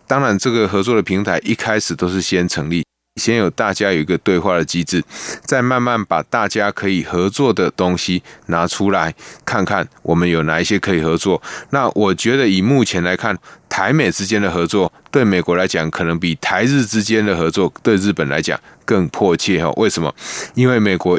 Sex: male